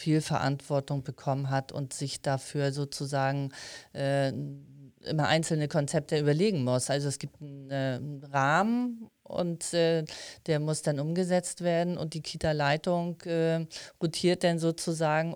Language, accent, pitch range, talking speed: German, German, 145-165 Hz, 130 wpm